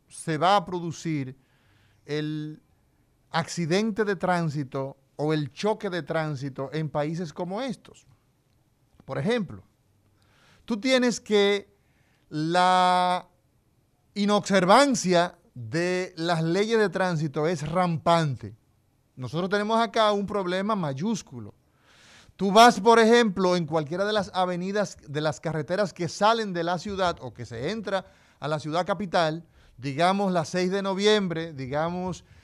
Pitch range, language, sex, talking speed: 155-205 Hz, Spanish, male, 125 wpm